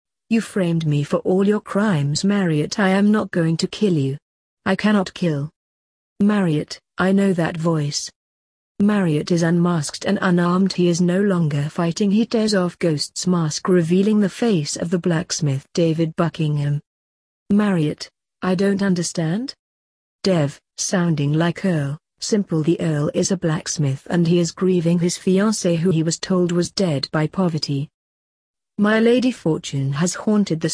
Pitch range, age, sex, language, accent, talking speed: 160-195 Hz, 40-59, female, English, British, 155 wpm